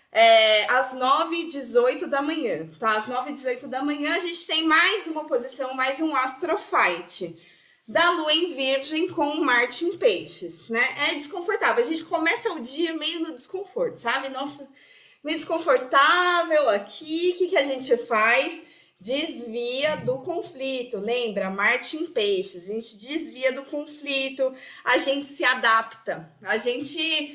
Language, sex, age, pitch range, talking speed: Portuguese, female, 20-39, 245-325 Hz, 150 wpm